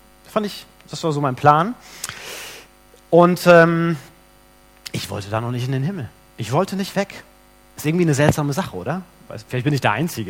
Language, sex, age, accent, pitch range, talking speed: German, male, 30-49, German, 115-185 Hz, 185 wpm